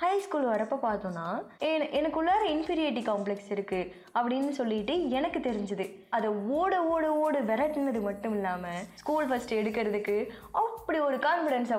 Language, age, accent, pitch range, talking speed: Tamil, 20-39, native, 205-270 Hz, 130 wpm